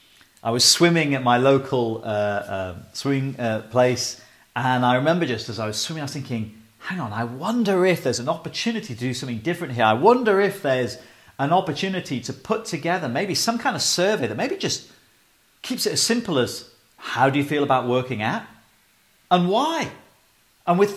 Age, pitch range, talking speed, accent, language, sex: 40-59, 110-160 Hz, 190 wpm, British, English, male